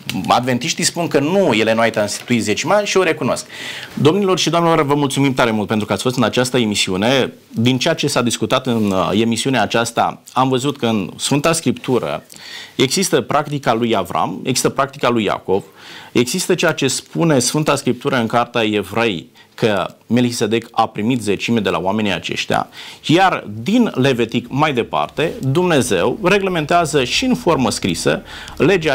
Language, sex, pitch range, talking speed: Romanian, male, 105-160 Hz, 165 wpm